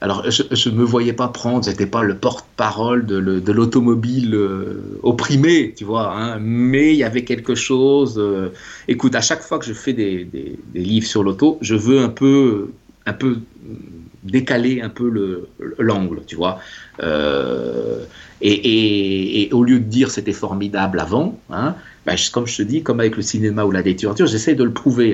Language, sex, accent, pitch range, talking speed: French, male, French, 100-120 Hz, 200 wpm